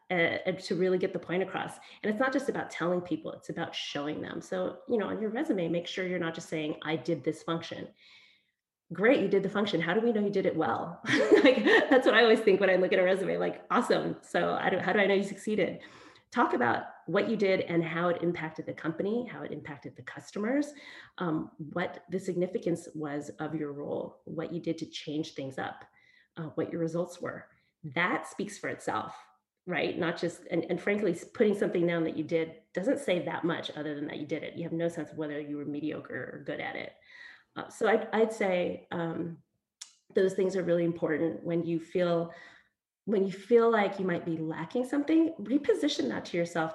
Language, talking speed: English, 220 wpm